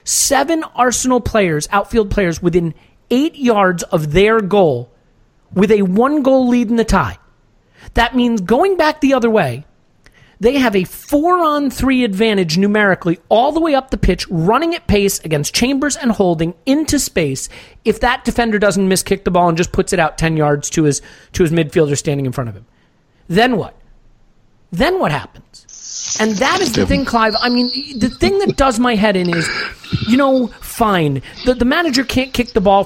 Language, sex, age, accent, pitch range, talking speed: English, male, 40-59, American, 175-245 Hz, 190 wpm